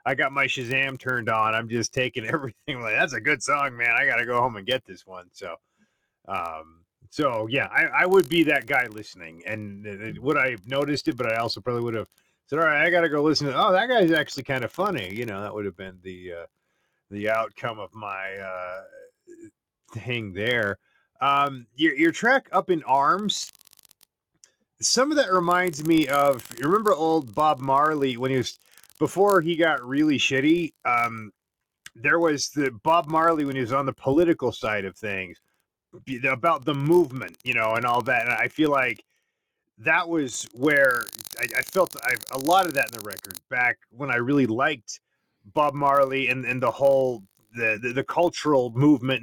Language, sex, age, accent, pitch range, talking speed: English, male, 30-49, American, 110-160 Hz, 200 wpm